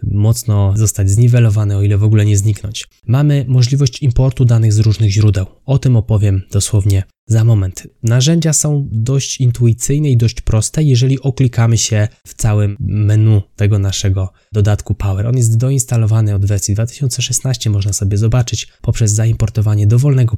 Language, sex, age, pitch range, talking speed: Polish, male, 20-39, 105-120 Hz, 150 wpm